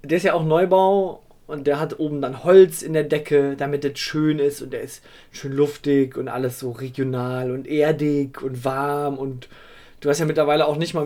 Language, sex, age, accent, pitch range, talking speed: German, male, 20-39, German, 140-180 Hz, 210 wpm